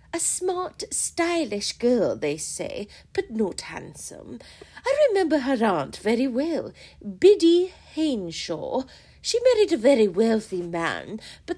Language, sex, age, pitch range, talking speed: English, female, 40-59, 235-360 Hz, 125 wpm